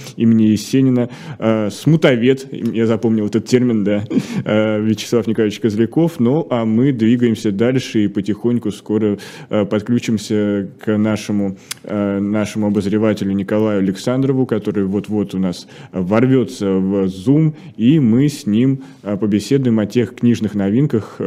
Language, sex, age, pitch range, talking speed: Russian, male, 20-39, 105-125 Hz, 120 wpm